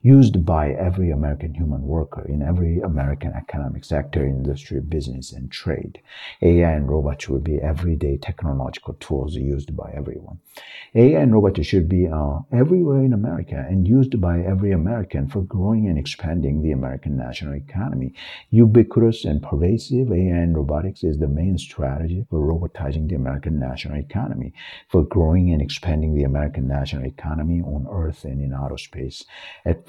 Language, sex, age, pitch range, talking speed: English, male, 50-69, 70-90 Hz, 160 wpm